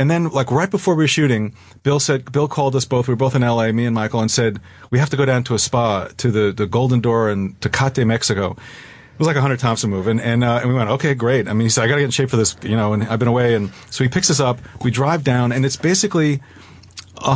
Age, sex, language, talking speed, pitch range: 40-59, male, English, 295 wpm, 115-140 Hz